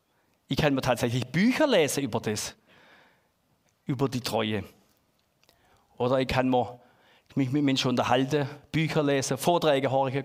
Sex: male